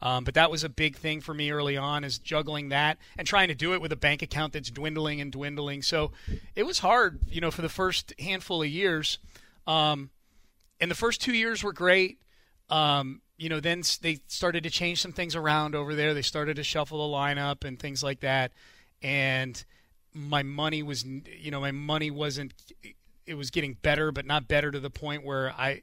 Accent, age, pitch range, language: American, 30-49, 130-155 Hz, English